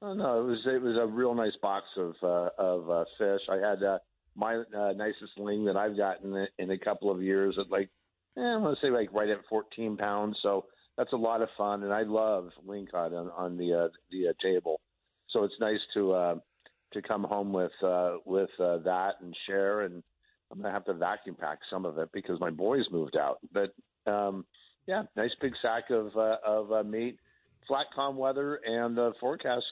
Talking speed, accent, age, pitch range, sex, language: 220 wpm, American, 50-69, 95-120 Hz, male, English